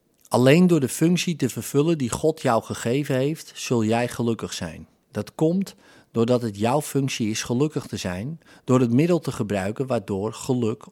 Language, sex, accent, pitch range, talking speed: Dutch, male, Dutch, 115-150 Hz, 175 wpm